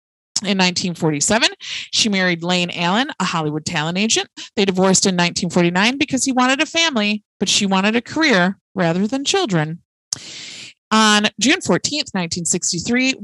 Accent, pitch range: American, 185-240 Hz